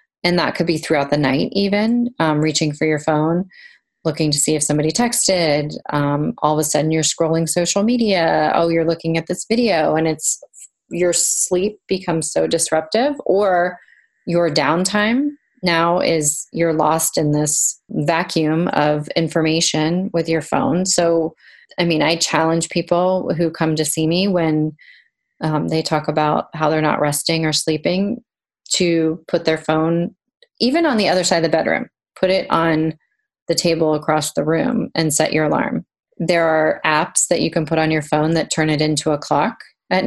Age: 30-49